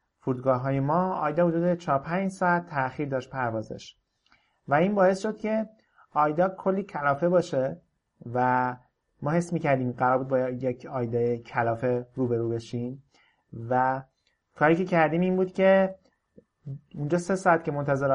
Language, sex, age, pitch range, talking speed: Persian, male, 30-49, 125-160 Hz, 145 wpm